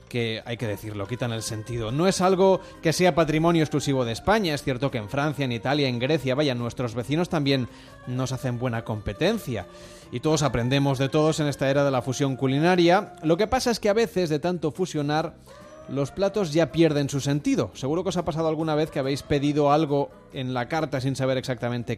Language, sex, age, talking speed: Spanish, male, 30-49, 215 wpm